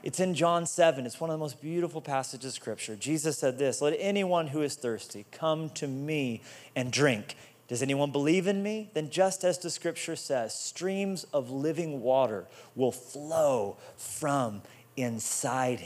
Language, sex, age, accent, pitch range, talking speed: English, male, 30-49, American, 135-165 Hz, 170 wpm